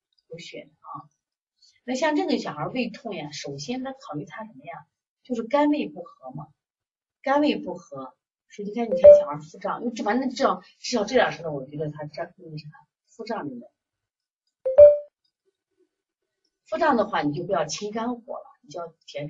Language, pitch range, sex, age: Chinese, 155-250 Hz, female, 30-49